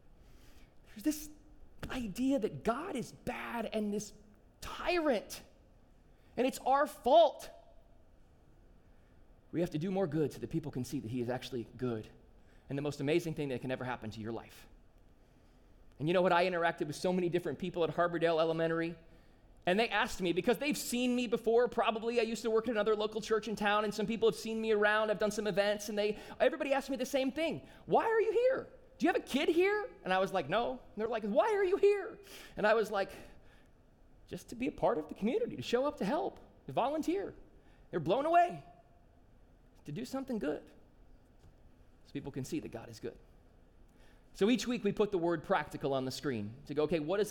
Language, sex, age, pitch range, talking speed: English, male, 30-49, 150-240 Hz, 210 wpm